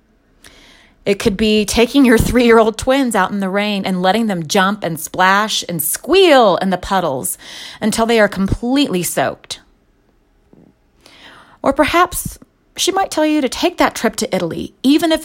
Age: 30-49